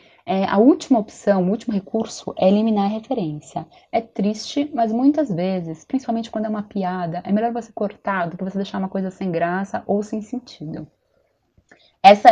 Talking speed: 180 wpm